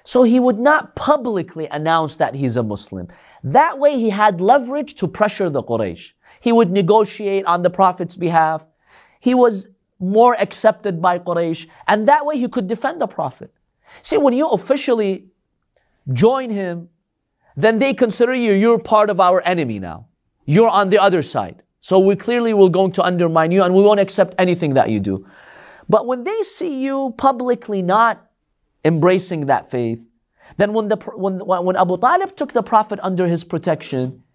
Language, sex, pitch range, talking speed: English, male, 155-225 Hz, 175 wpm